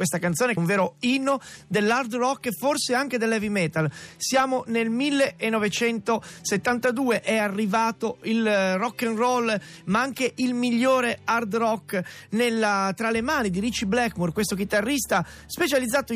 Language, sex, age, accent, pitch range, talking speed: Italian, male, 30-49, native, 190-245 Hz, 140 wpm